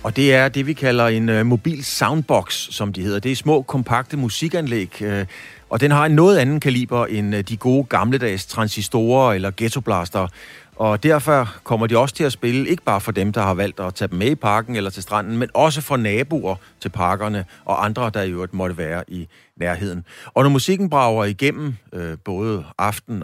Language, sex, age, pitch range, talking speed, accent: Danish, male, 30-49, 95-130 Hz, 210 wpm, native